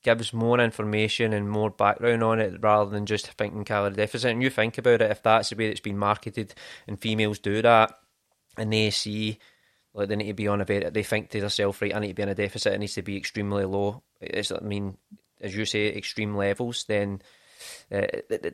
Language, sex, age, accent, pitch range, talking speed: English, male, 20-39, British, 105-120 Hz, 230 wpm